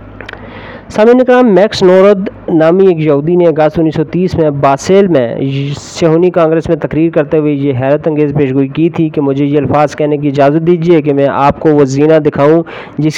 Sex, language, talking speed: male, Urdu, 190 wpm